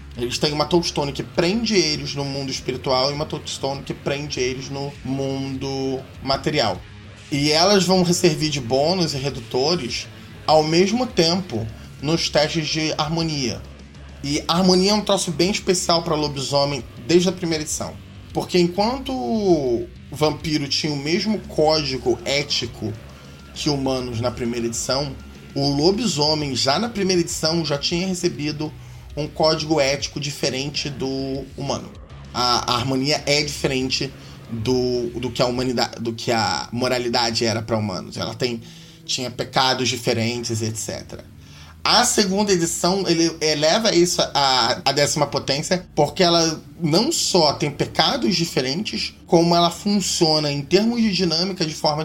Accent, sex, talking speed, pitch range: Brazilian, male, 145 wpm, 125-170 Hz